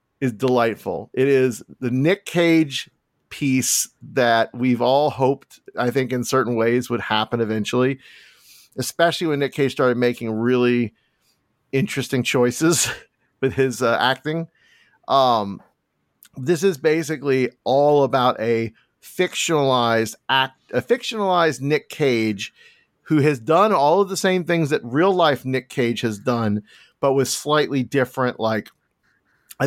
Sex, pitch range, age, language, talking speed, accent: male, 120-145 Hz, 40-59, English, 135 wpm, American